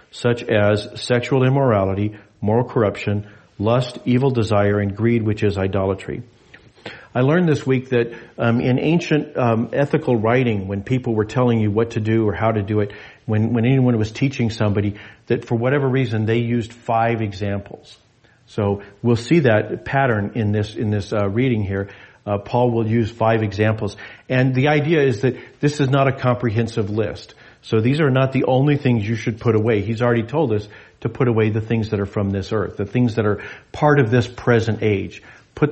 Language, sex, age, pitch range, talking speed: English, male, 50-69, 105-125 Hz, 195 wpm